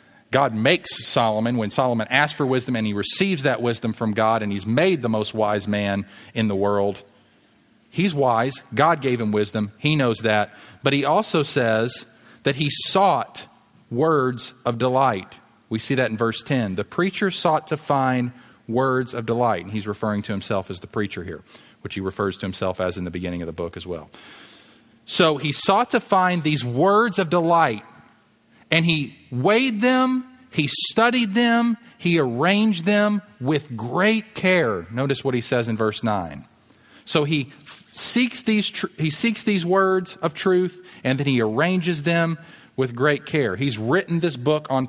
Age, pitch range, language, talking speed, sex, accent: 40-59, 115-175 Hz, English, 180 wpm, male, American